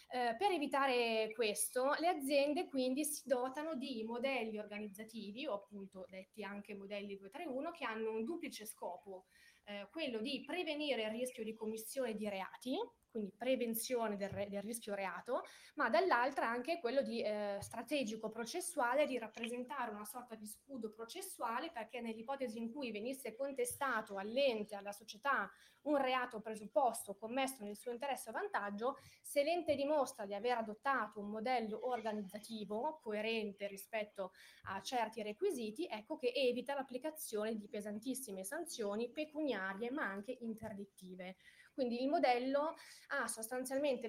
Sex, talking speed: female, 140 wpm